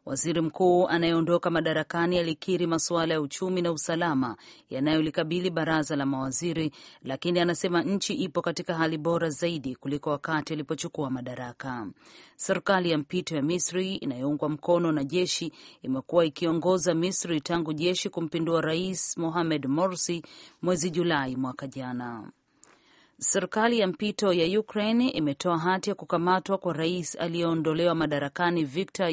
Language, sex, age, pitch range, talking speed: Swahili, female, 40-59, 155-180 Hz, 130 wpm